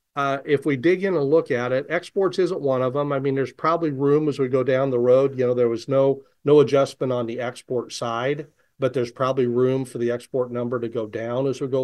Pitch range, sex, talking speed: 115-135 Hz, male, 255 wpm